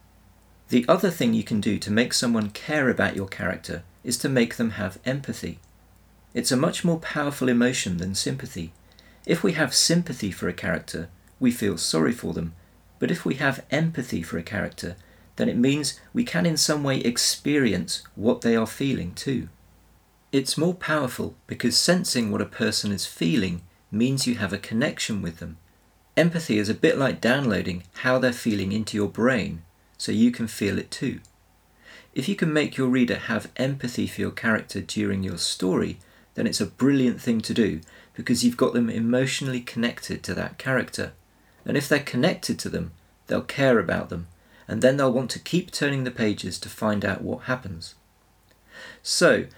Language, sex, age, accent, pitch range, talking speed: English, male, 40-59, British, 95-130 Hz, 185 wpm